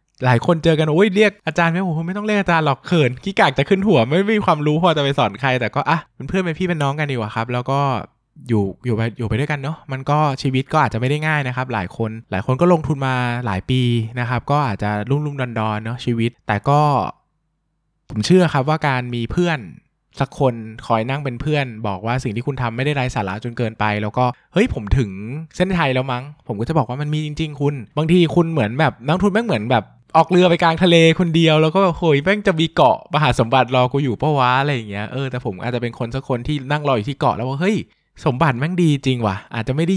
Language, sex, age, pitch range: Thai, male, 20-39, 115-155 Hz